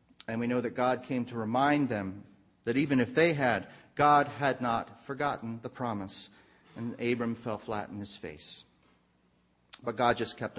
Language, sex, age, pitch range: English, male, 40-59, 110-135 Hz